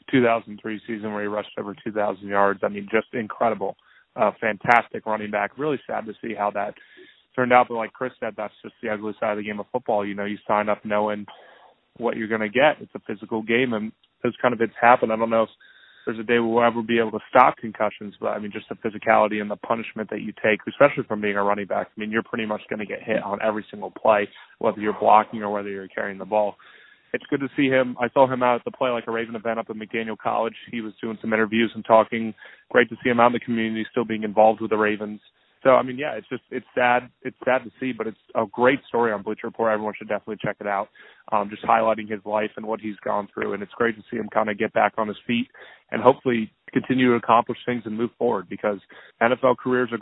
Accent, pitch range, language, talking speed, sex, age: American, 105-120 Hz, English, 260 wpm, male, 20-39